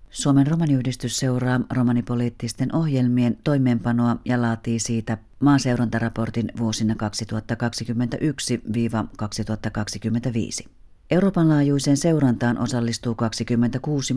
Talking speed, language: 70 wpm, Finnish